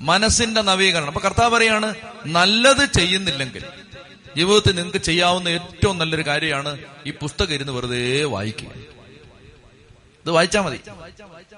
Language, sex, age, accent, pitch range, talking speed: Malayalam, male, 30-49, native, 145-185 Hz, 110 wpm